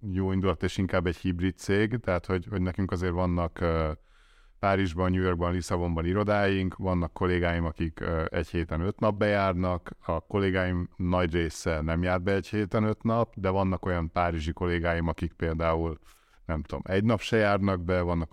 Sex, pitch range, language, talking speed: male, 85-100 Hz, Hungarian, 170 wpm